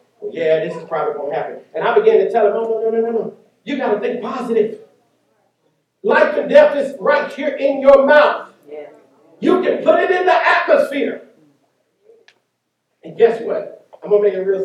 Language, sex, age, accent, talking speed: English, male, 50-69, American, 200 wpm